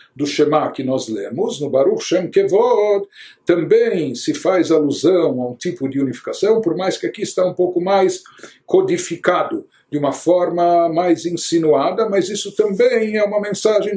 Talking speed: 165 wpm